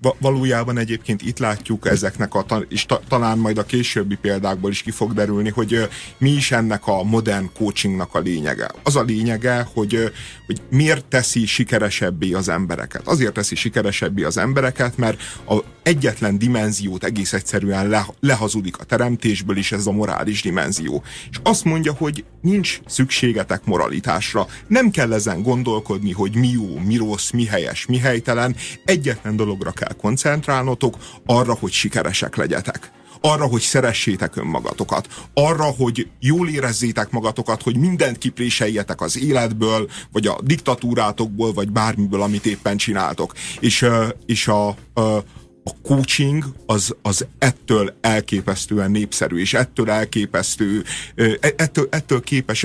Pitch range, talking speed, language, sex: 105-125 Hz, 140 wpm, Hungarian, male